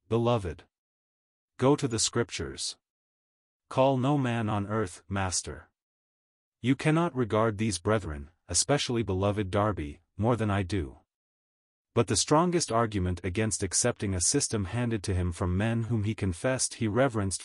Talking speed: 140 wpm